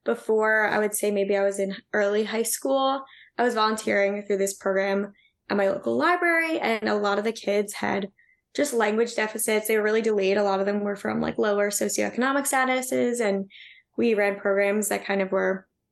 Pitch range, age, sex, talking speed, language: 195-230 Hz, 10-29, female, 200 wpm, English